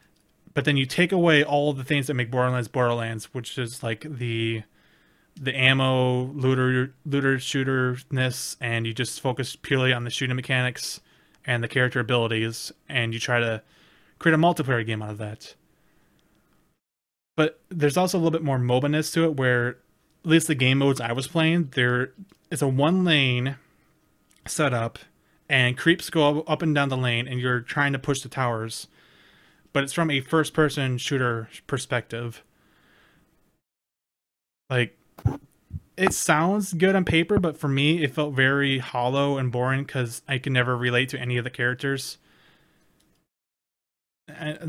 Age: 20-39